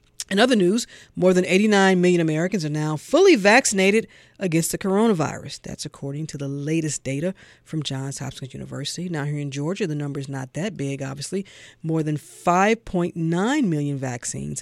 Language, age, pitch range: English, 40-59, 150-215 Hz